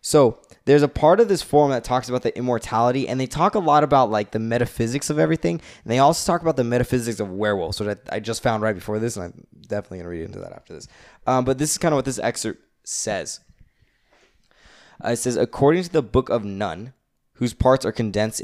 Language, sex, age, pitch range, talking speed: English, male, 20-39, 105-130 Hz, 235 wpm